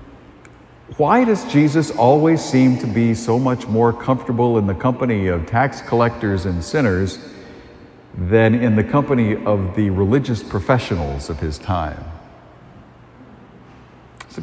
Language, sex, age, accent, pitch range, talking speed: English, male, 50-69, American, 95-140 Hz, 130 wpm